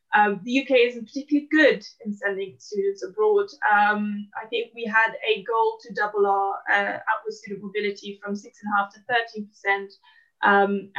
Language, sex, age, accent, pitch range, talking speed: English, female, 20-39, British, 205-265 Hz, 170 wpm